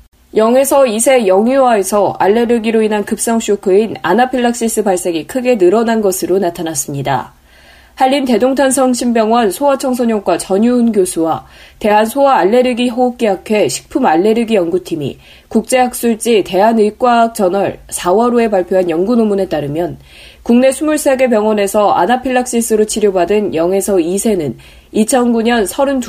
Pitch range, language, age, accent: 185-245 Hz, Korean, 20-39, native